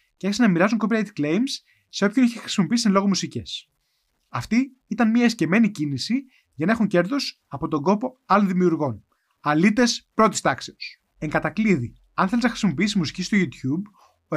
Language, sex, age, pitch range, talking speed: Greek, male, 20-39, 155-225 Hz, 165 wpm